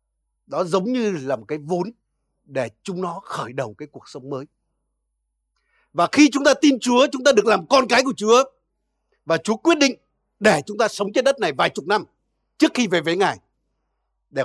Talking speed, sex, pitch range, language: 210 wpm, male, 160-250 Hz, Vietnamese